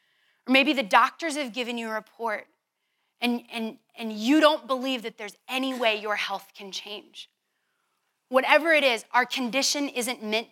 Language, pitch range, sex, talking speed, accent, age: English, 215-295 Hz, female, 165 wpm, American, 30-49